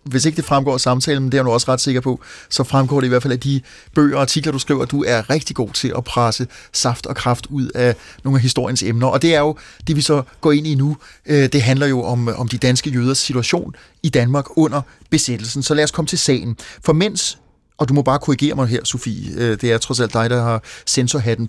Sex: male